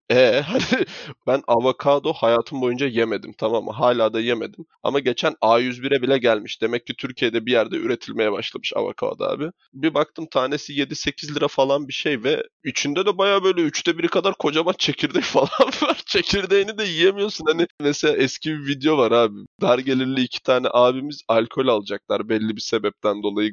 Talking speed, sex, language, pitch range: 170 wpm, male, Turkish, 125-150 Hz